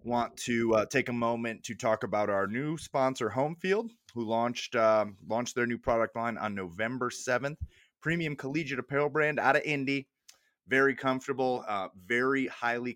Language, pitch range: English, 95-125 Hz